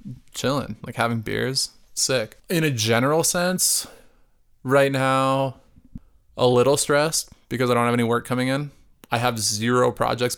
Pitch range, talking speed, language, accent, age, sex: 110-130 Hz, 150 wpm, English, American, 20-39, male